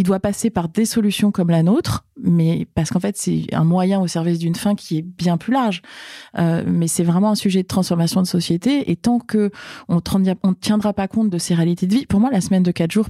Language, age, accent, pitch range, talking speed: French, 30-49, French, 175-210 Hz, 245 wpm